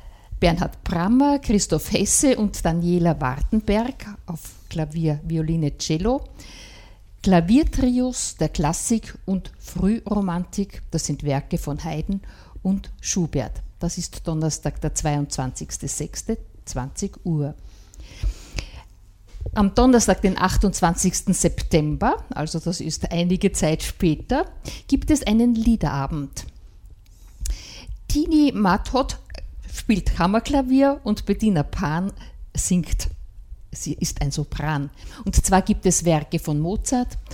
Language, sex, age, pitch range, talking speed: German, female, 50-69, 150-210 Hz, 100 wpm